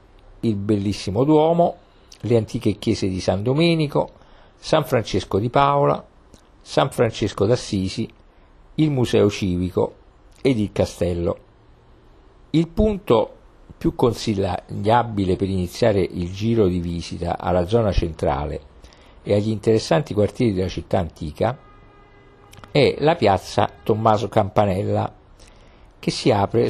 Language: Italian